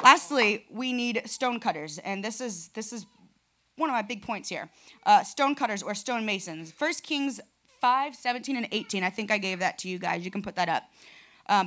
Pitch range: 200-255 Hz